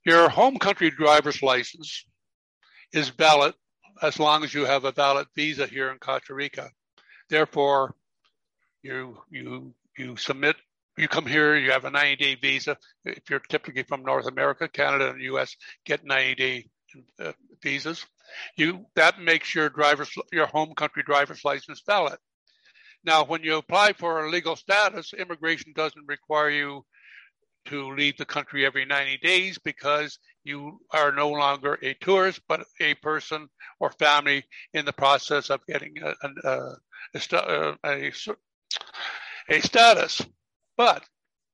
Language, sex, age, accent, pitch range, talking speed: English, male, 60-79, American, 140-170 Hz, 150 wpm